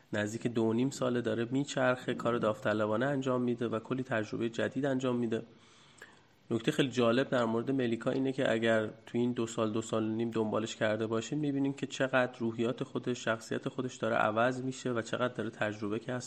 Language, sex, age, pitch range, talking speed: Persian, male, 30-49, 110-130 Hz, 185 wpm